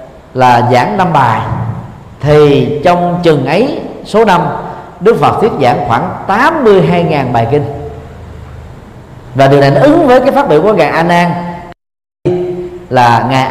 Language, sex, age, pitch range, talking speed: Vietnamese, male, 40-59, 125-175 Hz, 140 wpm